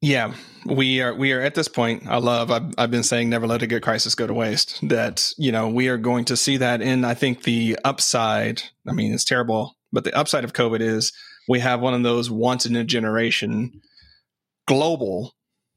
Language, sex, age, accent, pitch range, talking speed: English, male, 30-49, American, 115-130 Hz, 215 wpm